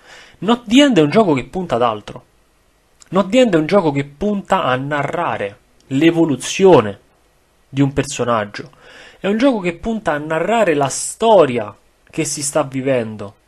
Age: 30-49